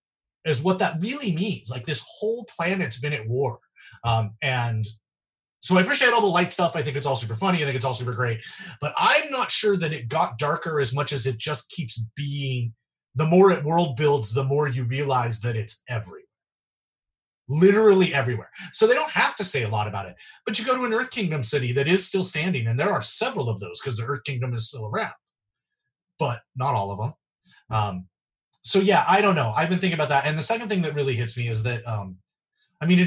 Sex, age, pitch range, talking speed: male, 30-49, 115-170 Hz, 230 wpm